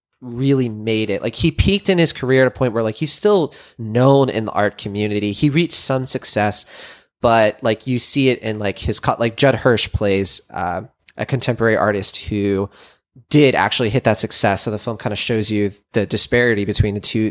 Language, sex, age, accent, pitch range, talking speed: English, male, 20-39, American, 105-130 Hz, 210 wpm